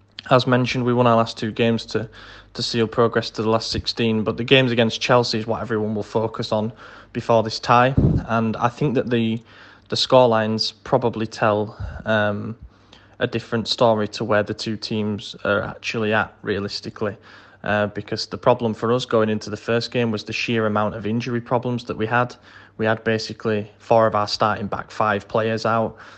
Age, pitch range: 10-29, 105-115 Hz